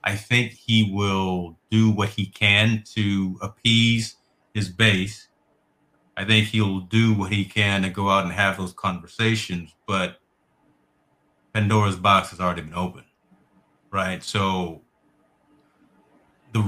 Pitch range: 95-110 Hz